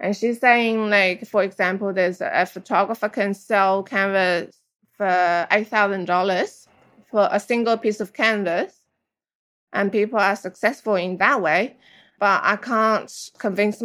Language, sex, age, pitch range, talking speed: English, female, 20-39, 195-230 Hz, 140 wpm